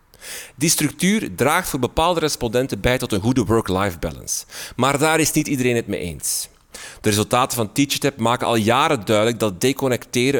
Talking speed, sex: 175 wpm, male